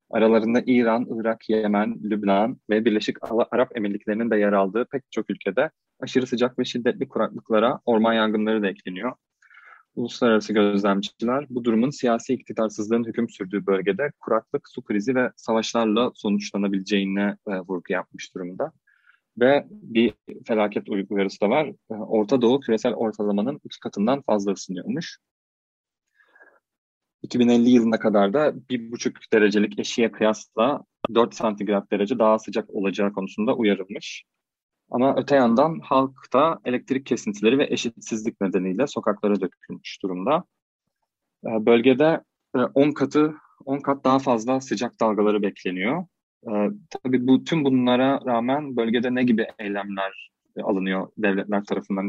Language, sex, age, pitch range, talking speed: Turkish, male, 30-49, 100-125 Hz, 125 wpm